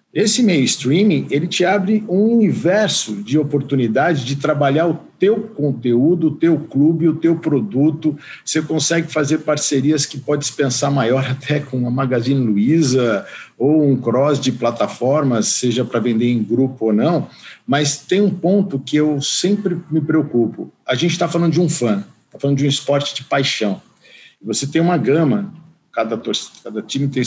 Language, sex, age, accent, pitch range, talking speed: Portuguese, male, 50-69, Brazilian, 115-155 Hz, 165 wpm